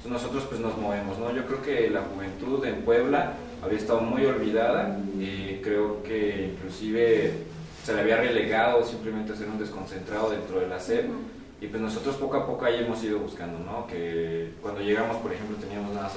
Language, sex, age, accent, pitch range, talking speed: Spanish, male, 20-39, Mexican, 100-120 Hz, 190 wpm